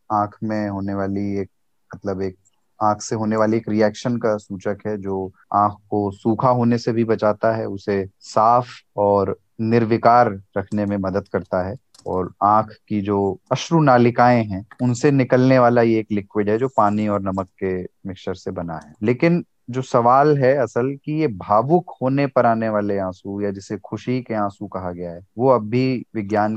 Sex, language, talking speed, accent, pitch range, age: male, Hindi, 180 wpm, native, 100-130 Hz, 30-49